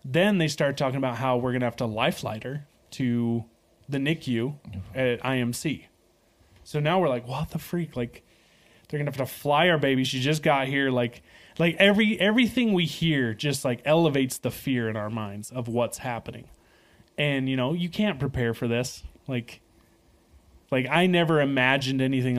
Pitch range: 120-150 Hz